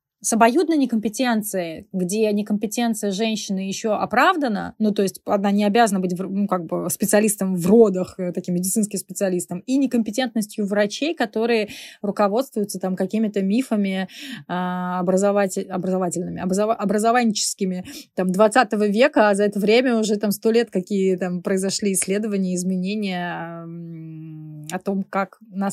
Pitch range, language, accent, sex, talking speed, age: 185-220 Hz, Russian, native, female, 125 wpm, 20-39